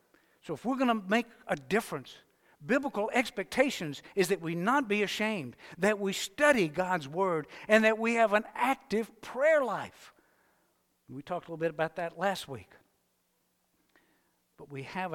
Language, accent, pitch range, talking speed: English, American, 155-220 Hz, 160 wpm